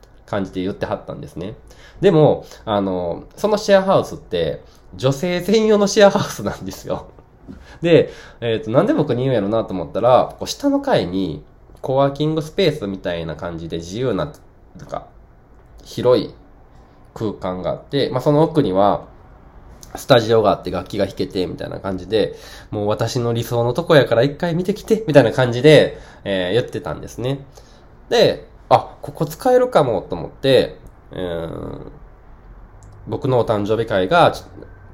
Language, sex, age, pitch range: Japanese, male, 20-39, 95-155 Hz